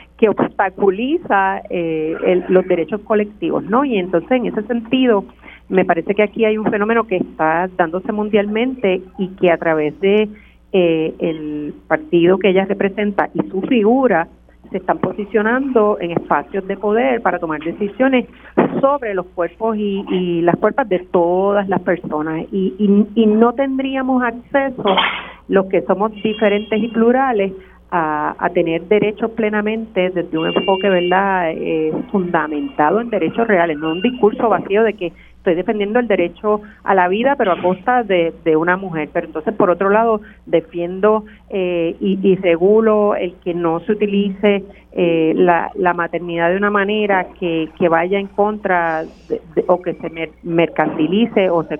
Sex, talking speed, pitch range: female, 160 wpm, 170-215 Hz